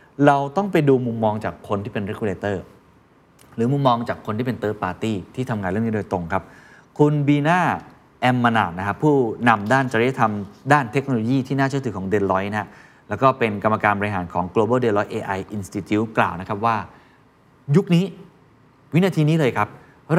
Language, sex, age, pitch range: Thai, male, 20-39, 105-145 Hz